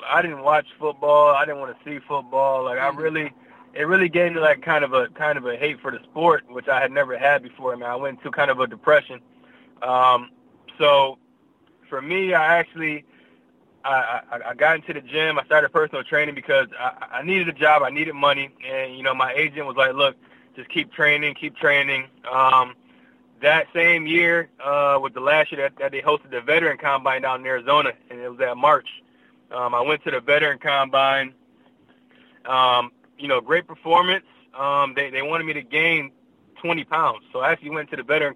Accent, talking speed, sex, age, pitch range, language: American, 210 wpm, male, 20-39, 135-165 Hz, English